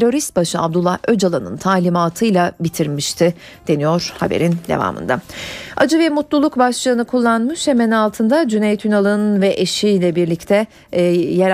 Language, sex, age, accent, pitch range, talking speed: Turkish, female, 40-59, native, 180-240 Hz, 115 wpm